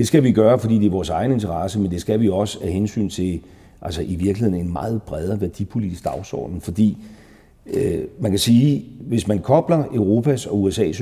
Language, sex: English, male